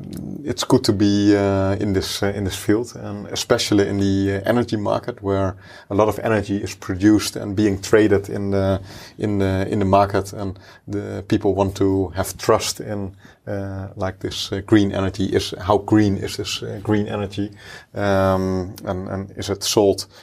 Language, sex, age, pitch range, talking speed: German, male, 30-49, 95-105 Hz, 185 wpm